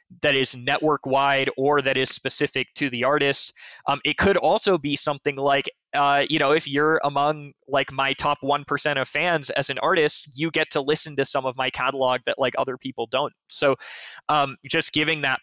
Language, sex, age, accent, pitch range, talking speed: English, male, 20-39, American, 125-145 Hz, 200 wpm